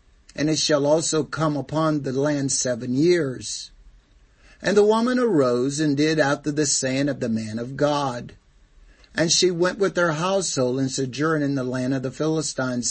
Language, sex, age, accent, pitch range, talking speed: English, male, 60-79, American, 135-175 Hz, 175 wpm